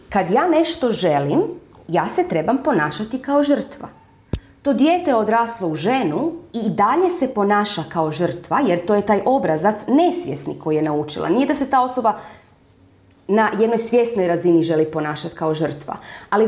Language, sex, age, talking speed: Croatian, female, 30-49, 165 wpm